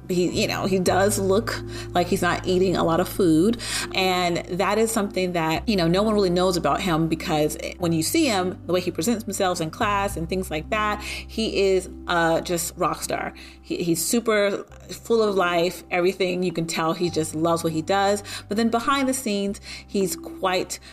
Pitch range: 160-205 Hz